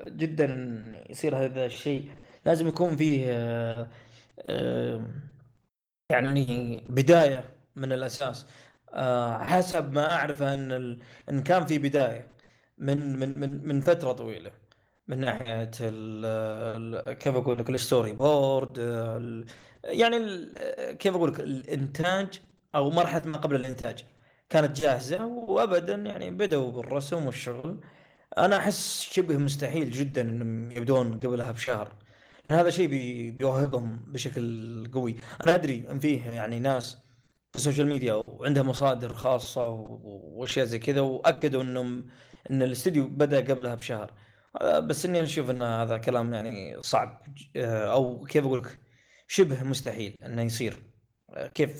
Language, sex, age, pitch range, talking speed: Arabic, male, 20-39, 120-145 Hz, 125 wpm